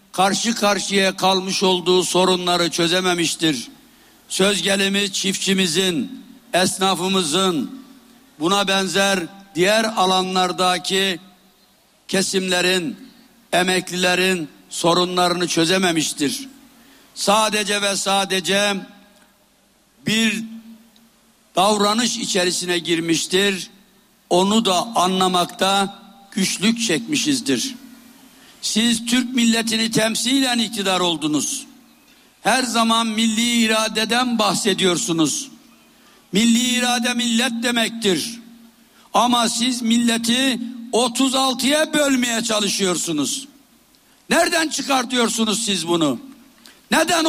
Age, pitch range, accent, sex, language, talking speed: 60-79, 190-255 Hz, native, male, Turkish, 70 wpm